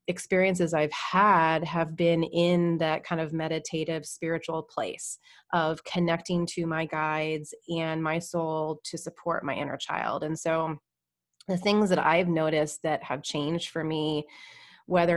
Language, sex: English, female